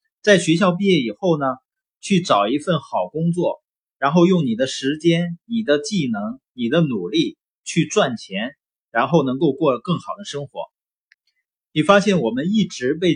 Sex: male